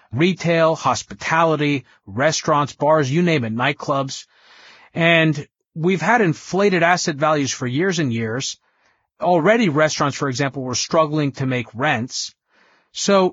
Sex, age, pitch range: female, 20-39, 135-175 Hz